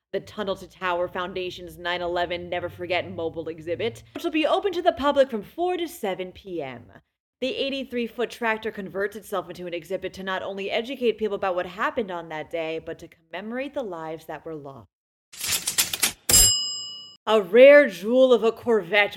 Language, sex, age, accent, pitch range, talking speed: English, female, 30-49, American, 175-245 Hz, 170 wpm